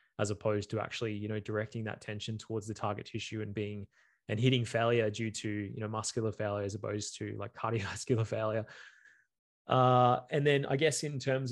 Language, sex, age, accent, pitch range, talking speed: English, male, 20-39, Australian, 110-125 Hz, 195 wpm